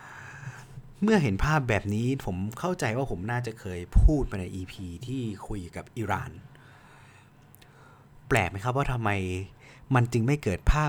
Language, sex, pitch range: Thai, male, 95-125 Hz